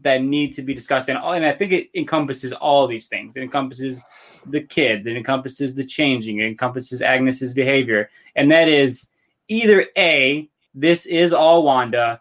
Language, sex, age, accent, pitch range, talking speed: English, male, 20-39, American, 125-145 Hz, 170 wpm